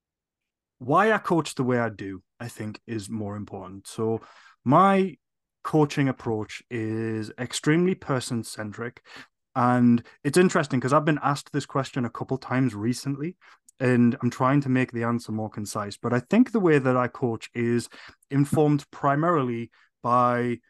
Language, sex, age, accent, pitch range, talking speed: English, male, 30-49, British, 115-135 Hz, 155 wpm